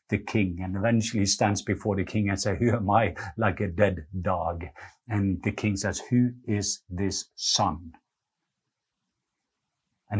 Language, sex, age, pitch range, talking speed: English, male, 50-69, 100-120 Hz, 160 wpm